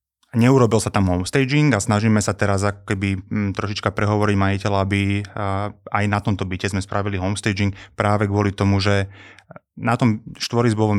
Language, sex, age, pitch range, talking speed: Slovak, male, 20-39, 95-115 Hz, 155 wpm